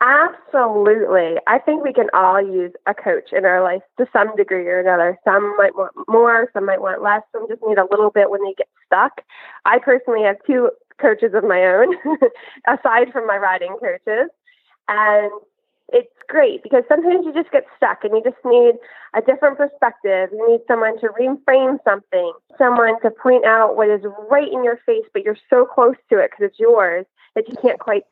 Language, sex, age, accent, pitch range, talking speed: English, female, 20-39, American, 205-305 Hz, 200 wpm